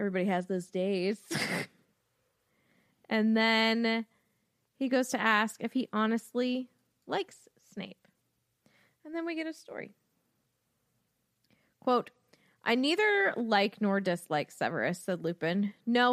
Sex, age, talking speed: female, 20-39, 115 wpm